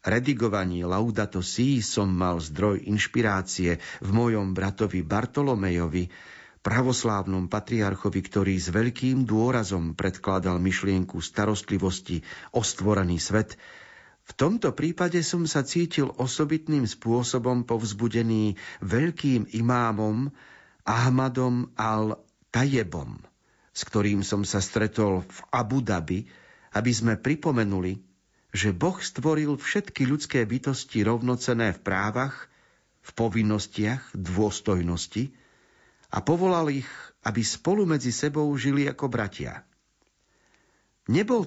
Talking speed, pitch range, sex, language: 100 wpm, 100-130 Hz, male, Slovak